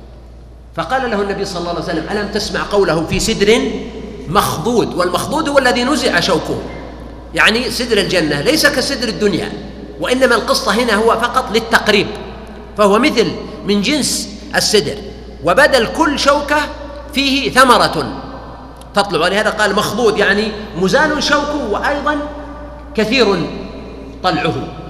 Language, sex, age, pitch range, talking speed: Arabic, male, 40-59, 190-245 Hz, 120 wpm